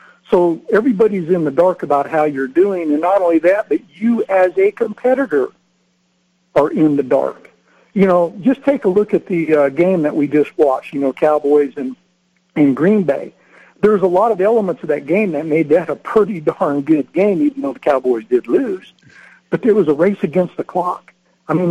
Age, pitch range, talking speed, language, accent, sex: 60-79, 150-200 Hz, 205 wpm, English, American, male